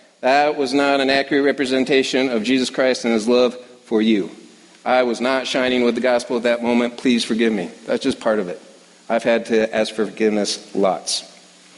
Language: English